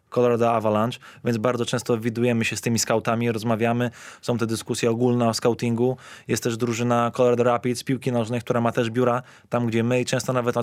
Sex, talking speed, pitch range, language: male, 200 wpm, 120-130 Hz, Polish